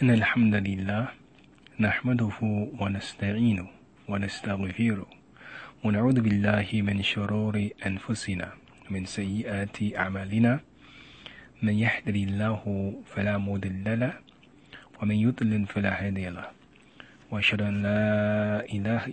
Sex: male